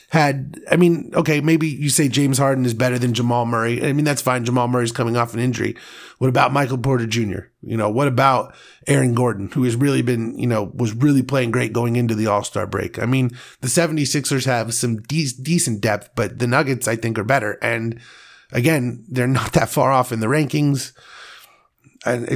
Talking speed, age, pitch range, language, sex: 205 wpm, 30-49, 115-145 Hz, English, male